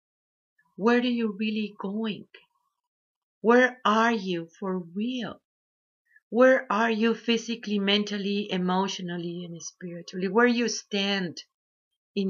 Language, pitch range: English, 185-230 Hz